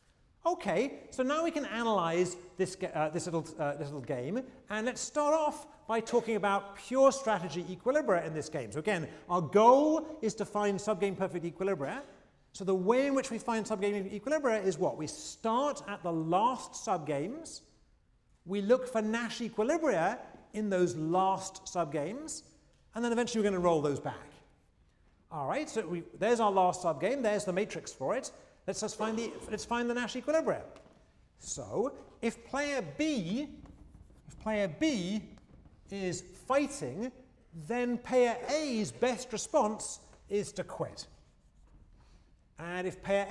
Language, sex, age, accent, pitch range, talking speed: English, male, 40-59, British, 175-240 Hz, 155 wpm